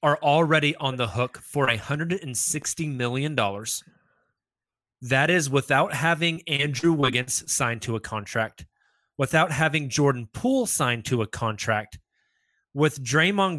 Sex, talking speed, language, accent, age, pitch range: male, 125 wpm, English, American, 20-39, 120-160 Hz